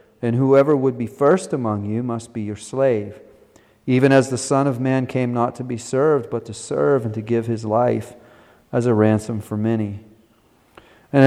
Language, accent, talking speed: English, American, 190 wpm